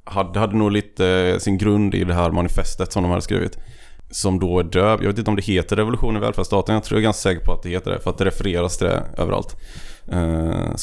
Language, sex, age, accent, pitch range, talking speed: Swedish, male, 20-39, native, 85-105 Hz, 255 wpm